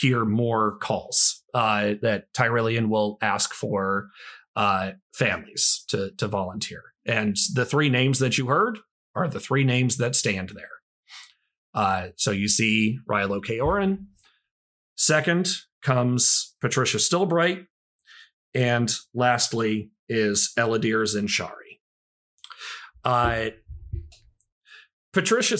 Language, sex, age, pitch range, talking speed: English, male, 40-59, 105-145 Hz, 105 wpm